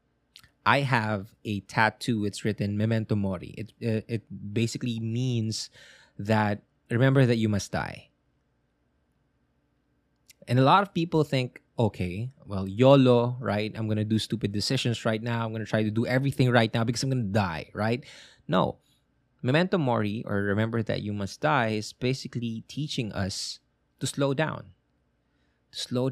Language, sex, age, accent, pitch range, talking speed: English, male, 20-39, Filipino, 105-130 Hz, 160 wpm